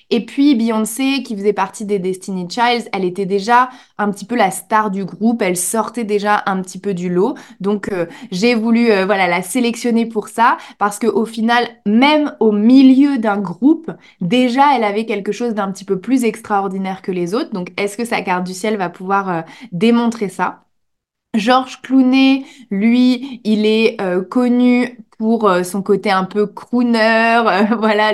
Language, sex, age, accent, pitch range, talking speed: French, female, 20-39, French, 195-240 Hz, 180 wpm